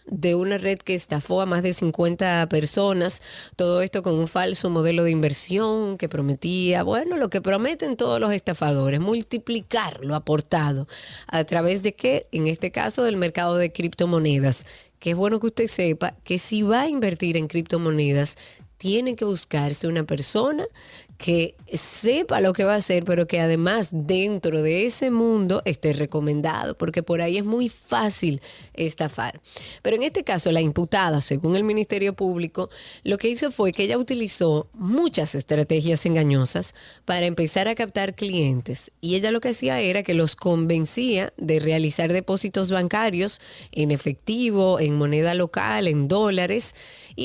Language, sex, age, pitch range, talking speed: Spanish, female, 30-49, 160-210 Hz, 165 wpm